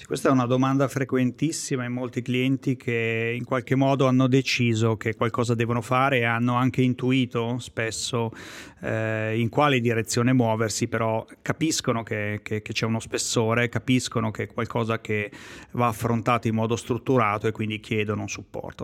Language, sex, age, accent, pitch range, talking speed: Italian, male, 30-49, native, 110-125 Hz, 160 wpm